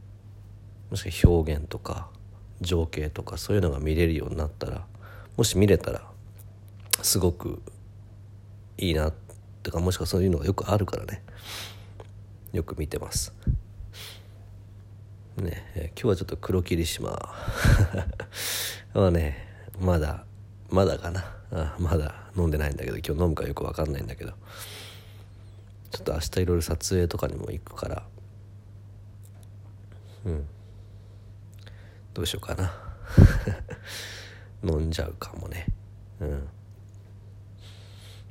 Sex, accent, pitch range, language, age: male, native, 90-100 Hz, Japanese, 40-59